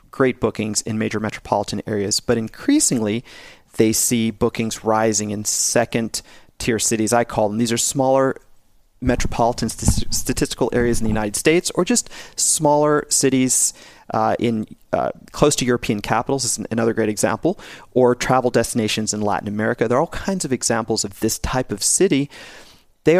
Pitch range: 110-130 Hz